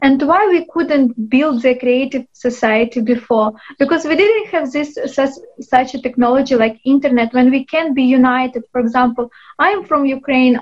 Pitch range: 235-275 Hz